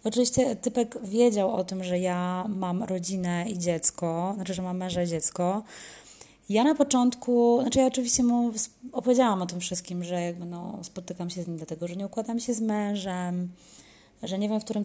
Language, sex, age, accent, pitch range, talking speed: Polish, female, 20-39, native, 175-220 Hz, 190 wpm